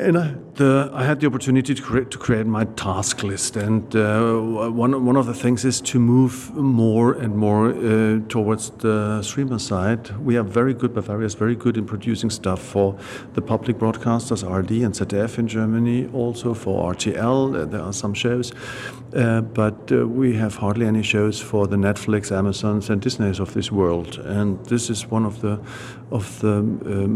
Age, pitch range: 50-69, 100-120 Hz